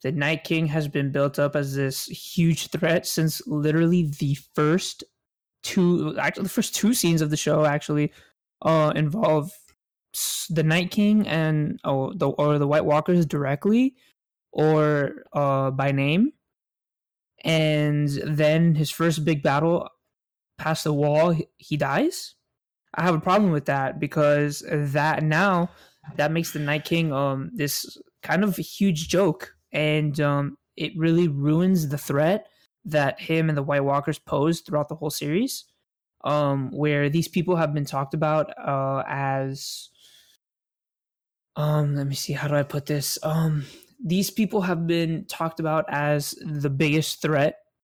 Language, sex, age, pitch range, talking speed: English, male, 20-39, 145-165 Hz, 155 wpm